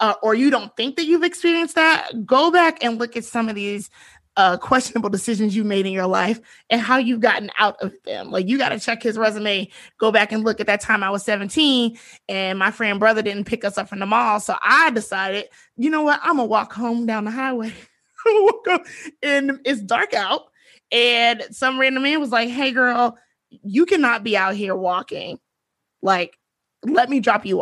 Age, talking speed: 20-39, 210 wpm